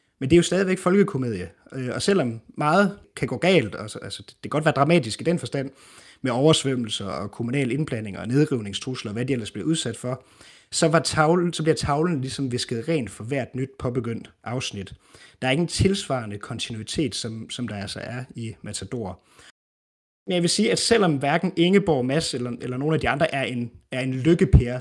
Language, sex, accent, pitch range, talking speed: Danish, male, native, 115-155 Hz, 195 wpm